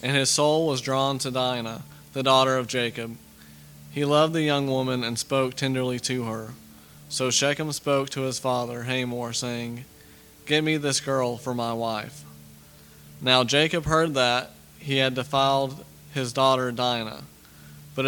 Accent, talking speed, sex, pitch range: American, 155 wpm, male, 115-135 Hz